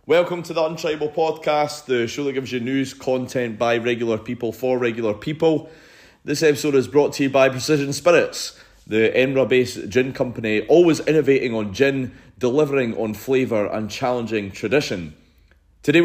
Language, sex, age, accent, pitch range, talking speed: English, male, 30-49, British, 110-140 Hz, 155 wpm